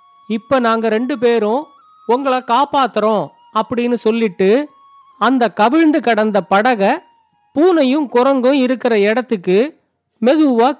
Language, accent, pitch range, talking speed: Tamil, native, 220-285 Hz, 95 wpm